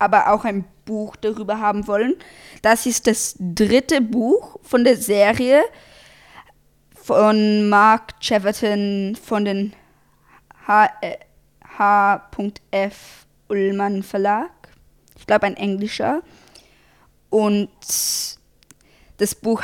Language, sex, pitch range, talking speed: German, female, 200-225 Hz, 90 wpm